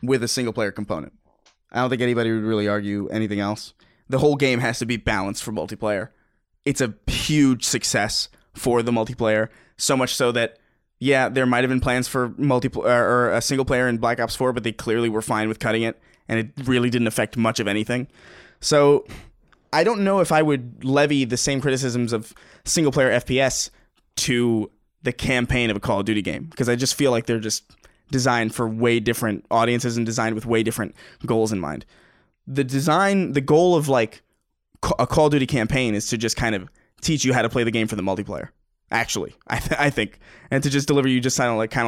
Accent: American